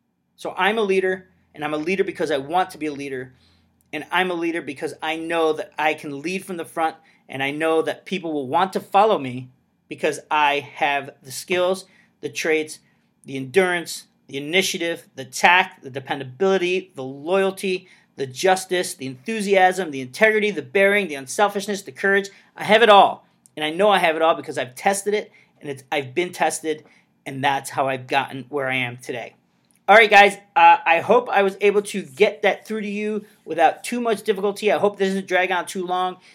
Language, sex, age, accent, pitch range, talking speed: English, male, 40-59, American, 155-200 Hz, 205 wpm